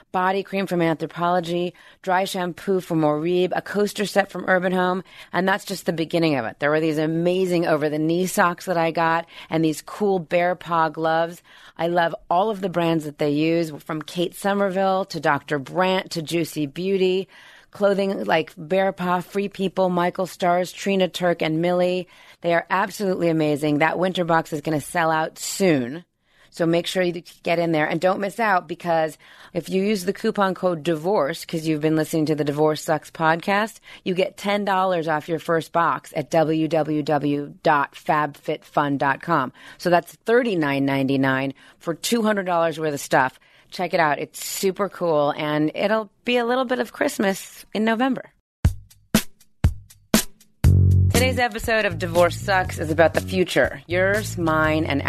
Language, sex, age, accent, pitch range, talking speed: English, female, 30-49, American, 155-190 Hz, 170 wpm